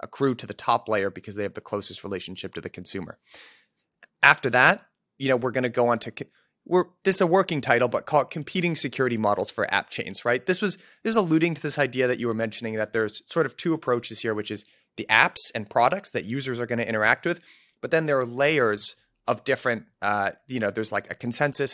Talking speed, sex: 235 wpm, male